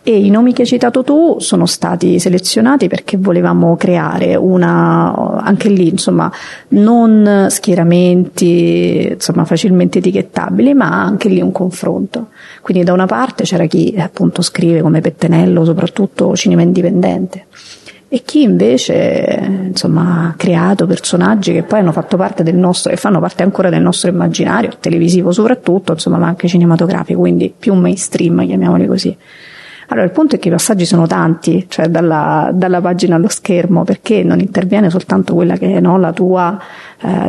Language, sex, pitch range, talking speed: English, female, 175-205 Hz, 160 wpm